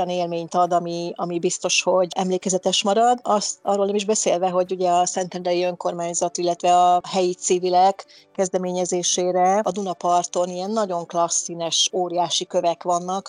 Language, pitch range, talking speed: Hungarian, 175-190 Hz, 140 wpm